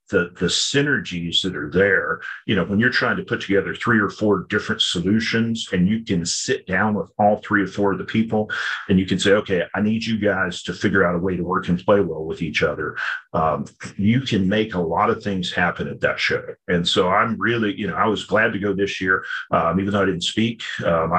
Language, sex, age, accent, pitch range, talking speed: English, male, 40-59, American, 90-105 Hz, 245 wpm